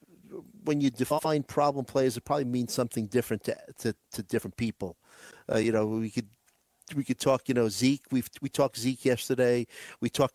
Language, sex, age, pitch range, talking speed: English, male, 50-69, 115-135 Hz, 190 wpm